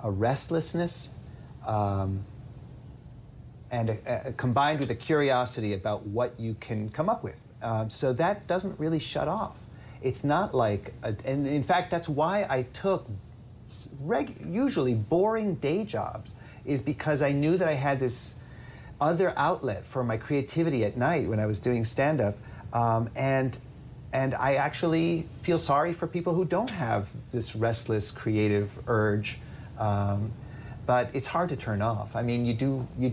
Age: 30-49